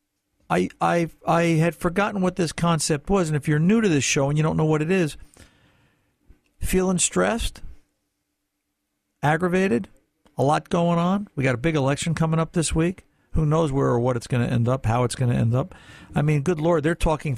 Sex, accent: male, American